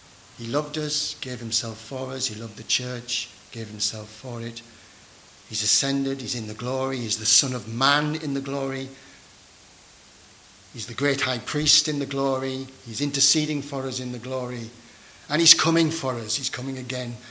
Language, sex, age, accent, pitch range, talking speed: English, male, 60-79, British, 105-130 Hz, 180 wpm